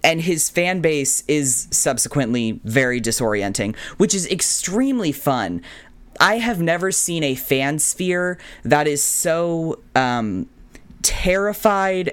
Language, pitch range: English, 130-190 Hz